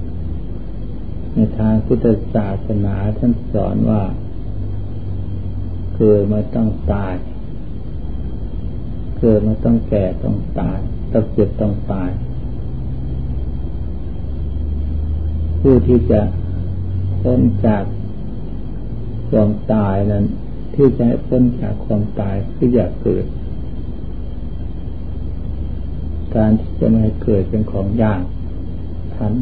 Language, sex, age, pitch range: Thai, male, 60-79, 90-120 Hz